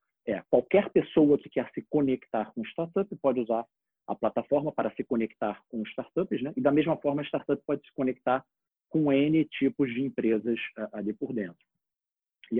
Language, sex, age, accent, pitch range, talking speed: Portuguese, male, 40-59, Brazilian, 110-145 Hz, 175 wpm